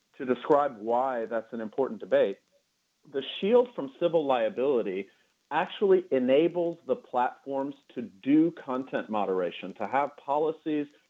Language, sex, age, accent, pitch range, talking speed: English, male, 40-59, American, 120-165 Hz, 125 wpm